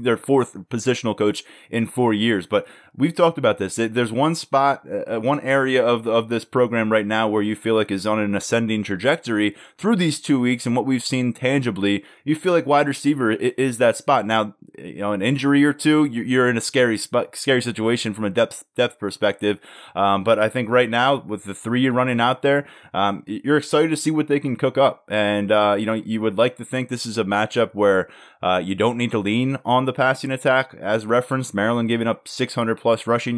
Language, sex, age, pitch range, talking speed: English, male, 20-39, 105-130 Hz, 220 wpm